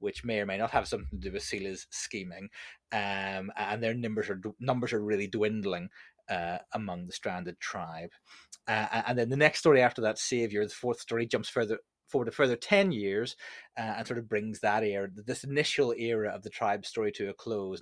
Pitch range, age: 95-115 Hz, 30-49